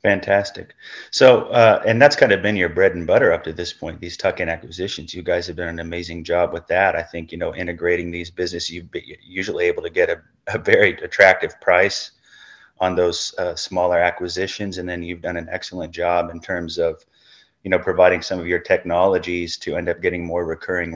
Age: 30-49